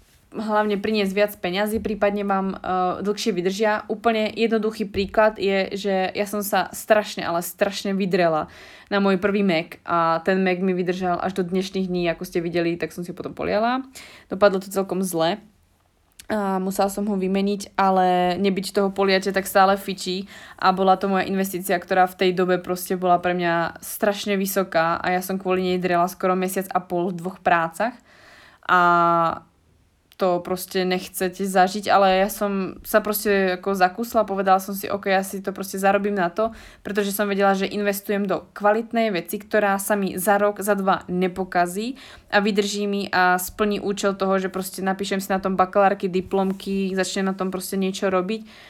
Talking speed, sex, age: 180 wpm, female, 20-39